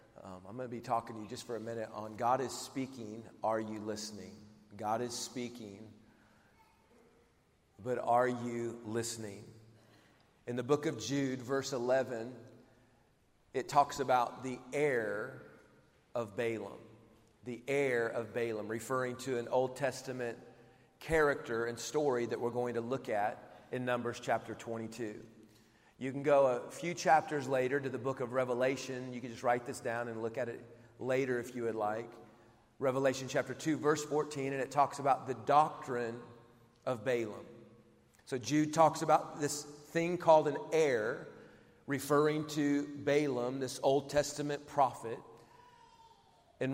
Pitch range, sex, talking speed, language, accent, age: 115-145 Hz, male, 155 wpm, English, American, 40-59